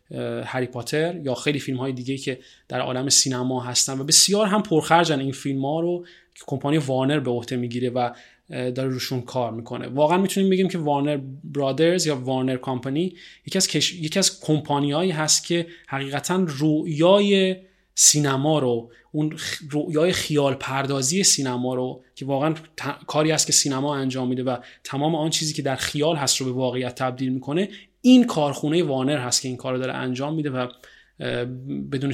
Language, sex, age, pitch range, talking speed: Persian, male, 30-49, 130-155 Hz, 175 wpm